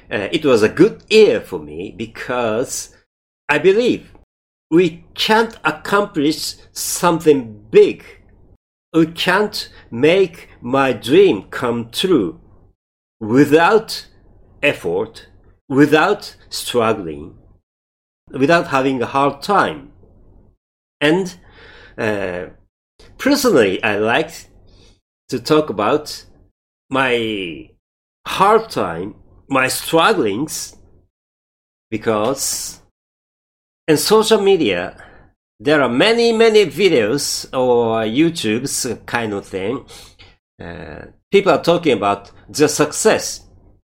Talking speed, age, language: 90 wpm, 50-69, English